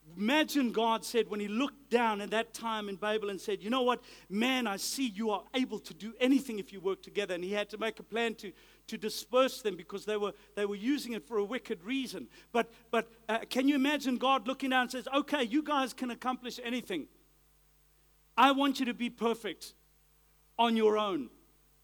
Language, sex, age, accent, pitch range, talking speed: English, male, 50-69, South African, 205-255 Hz, 215 wpm